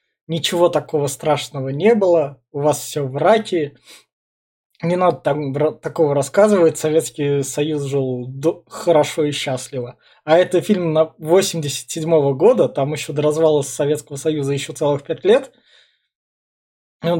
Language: Russian